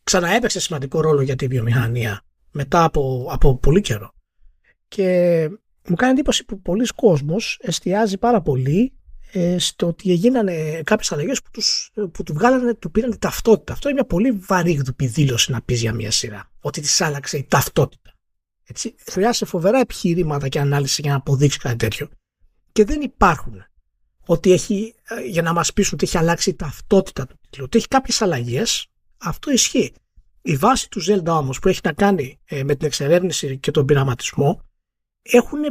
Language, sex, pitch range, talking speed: Greek, male, 140-215 Hz, 165 wpm